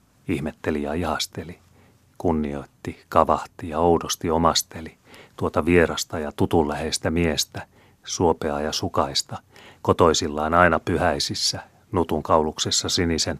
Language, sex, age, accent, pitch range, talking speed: Finnish, male, 30-49, native, 75-90 Hz, 105 wpm